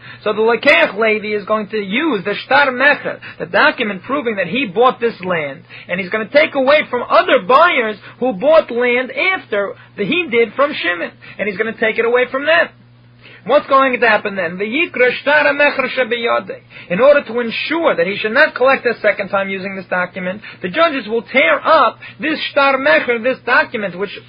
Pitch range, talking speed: 205-270 Hz, 200 wpm